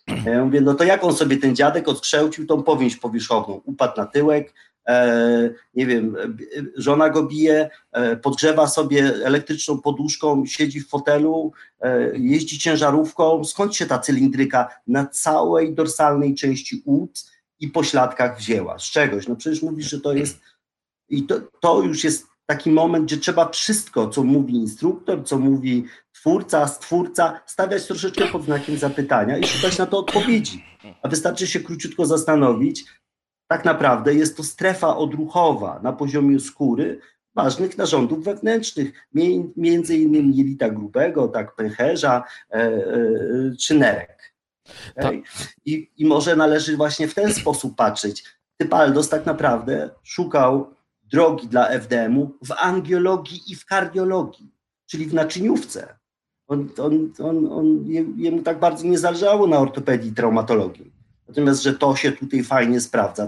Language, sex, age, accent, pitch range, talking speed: Polish, male, 40-59, native, 135-175 Hz, 140 wpm